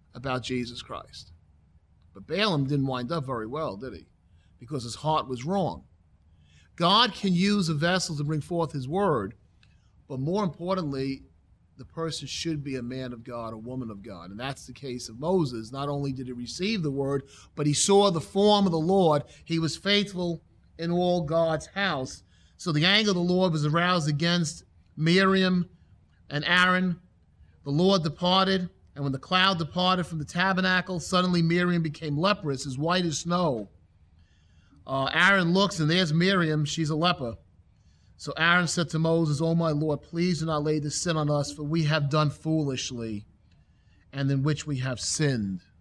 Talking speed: 180 wpm